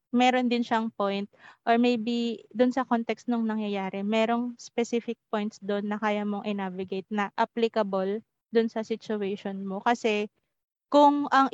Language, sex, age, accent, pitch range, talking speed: English, female, 20-39, Filipino, 210-240 Hz, 145 wpm